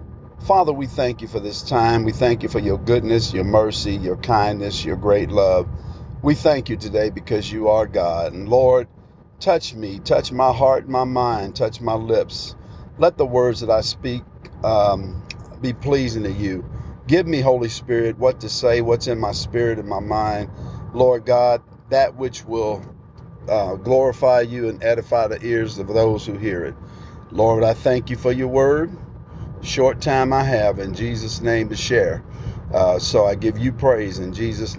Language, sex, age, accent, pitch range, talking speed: English, male, 50-69, American, 105-130 Hz, 185 wpm